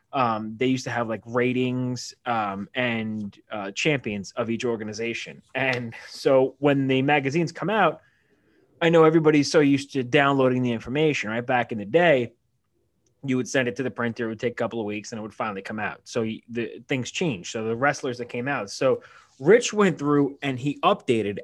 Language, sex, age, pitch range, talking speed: English, male, 20-39, 120-155 Hz, 205 wpm